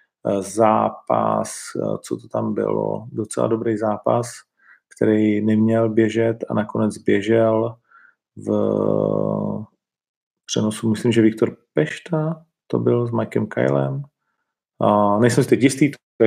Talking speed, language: 115 wpm, Czech